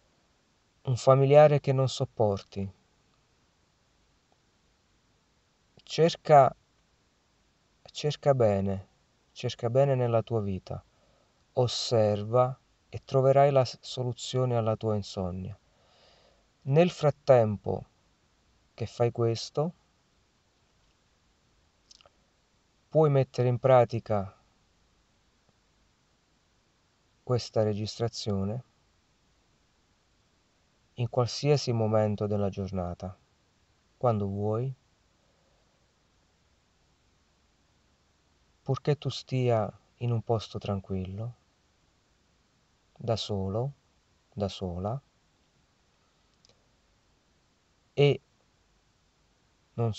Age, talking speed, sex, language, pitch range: 50-69, 60 wpm, male, Italian, 95-125 Hz